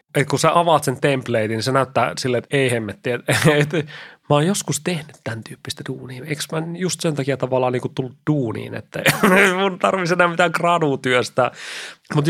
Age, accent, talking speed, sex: 30-49, native, 205 wpm, male